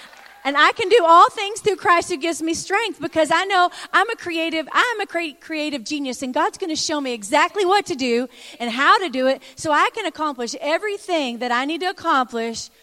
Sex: female